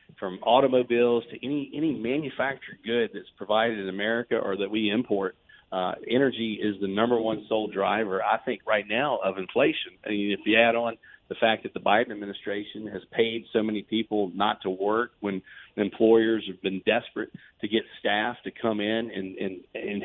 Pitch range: 100-115 Hz